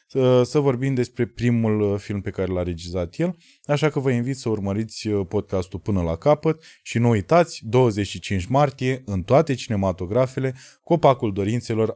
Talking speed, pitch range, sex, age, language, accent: 150 wpm, 95-135 Hz, male, 20-39, Romanian, native